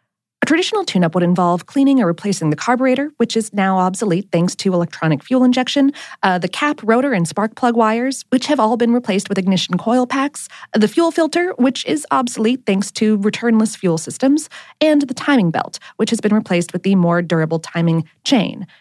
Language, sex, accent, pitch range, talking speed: English, female, American, 180-275 Hz, 195 wpm